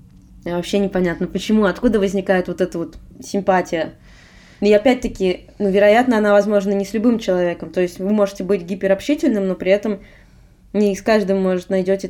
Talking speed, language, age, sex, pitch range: 165 wpm, Russian, 20-39, female, 185-230 Hz